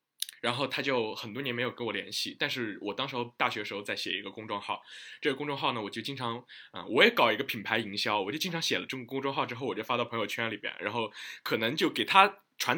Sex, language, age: male, Chinese, 20-39